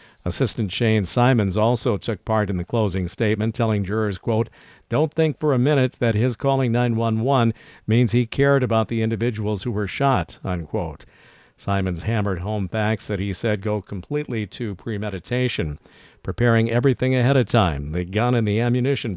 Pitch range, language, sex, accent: 100-120 Hz, English, male, American